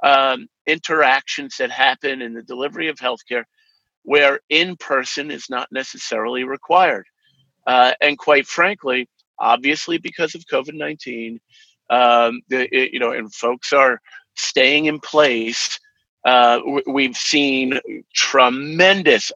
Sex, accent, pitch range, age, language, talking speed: male, American, 130-170 Hz, 50-69, English, 120 wpm